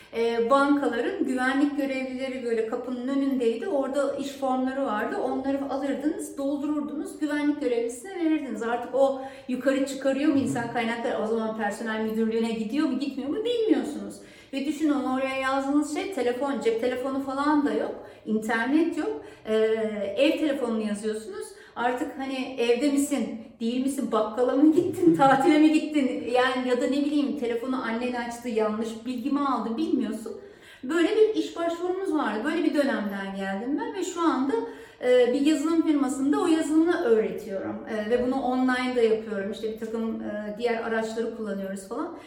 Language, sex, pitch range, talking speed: Turkish, female, 230-295 Hz, 145 wpm